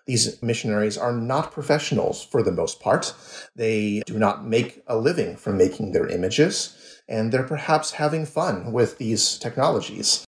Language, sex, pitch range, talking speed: English, male, 110-150 Hz, 155 wpm